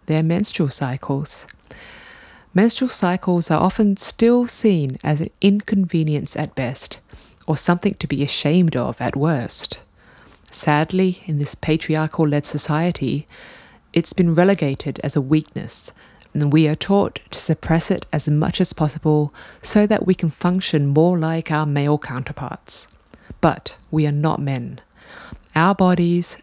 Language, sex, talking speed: English, female, 140 wpm